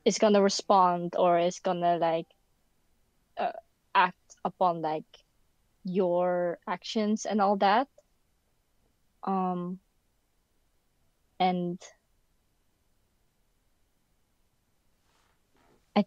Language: English